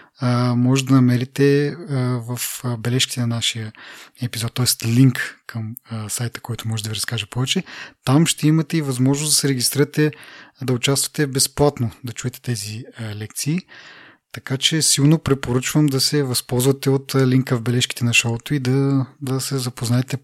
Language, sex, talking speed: Bulgarian, male, 150 wpm